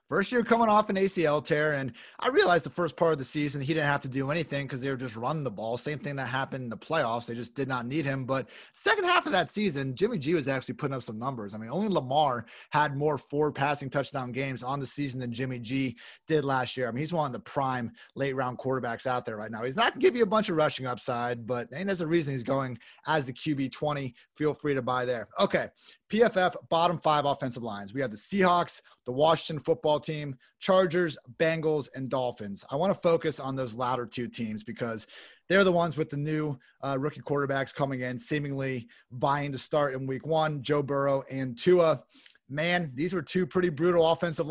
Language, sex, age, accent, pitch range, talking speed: English, male, 30-49, American, 130-160 Hz, 235 wpm